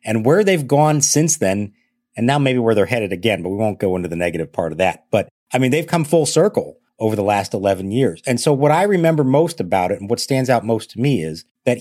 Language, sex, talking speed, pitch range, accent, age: English, male, 265 wpm, 105-150 Hz, American, 40-59